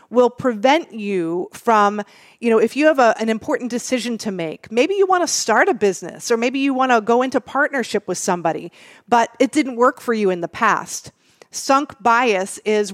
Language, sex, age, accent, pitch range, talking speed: English, female, 40-59, American, 195-250 Hz, 190 wpm